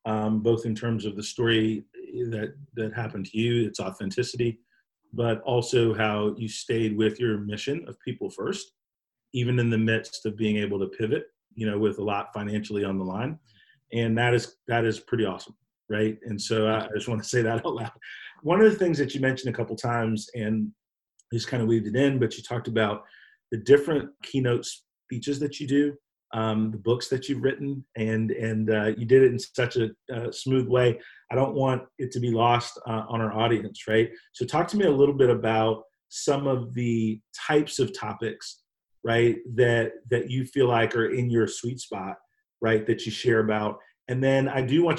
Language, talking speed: English, 205 wpm